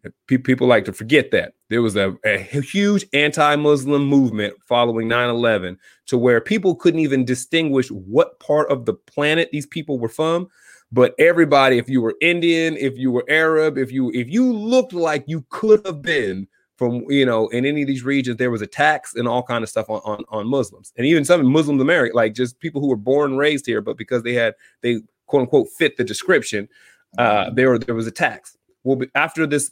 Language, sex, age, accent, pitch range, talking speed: English, male, 30-49, American, 120-150 Hz, 210 wpm